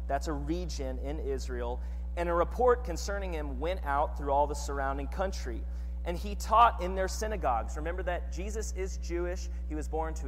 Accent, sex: American, male